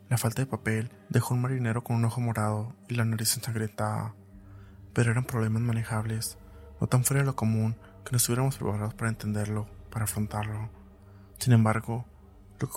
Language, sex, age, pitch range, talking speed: Spanish, male, 20-39, 110-125 Hz, 175 wpm